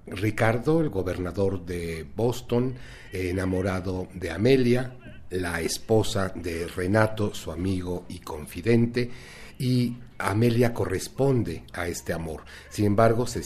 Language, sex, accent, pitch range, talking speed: Spanish, male, Mexican, 95-120 Hz, 110 wpm